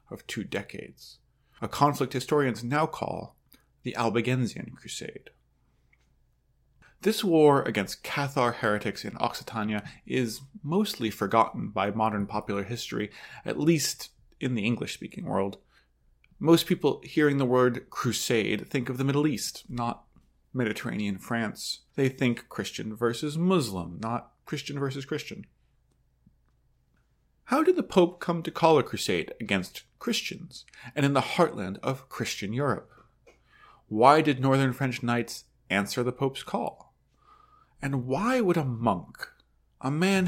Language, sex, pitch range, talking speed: English, male, 110-155 Hz, 130 wpm